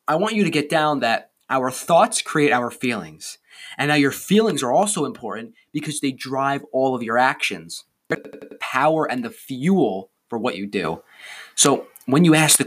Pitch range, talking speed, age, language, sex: 125-160 Hz, 190 wpm, 20-39, English, male